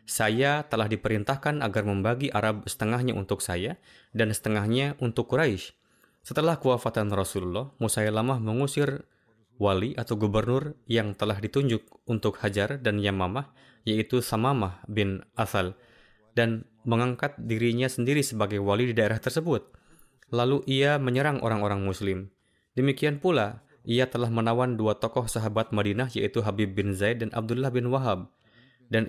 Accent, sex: native, male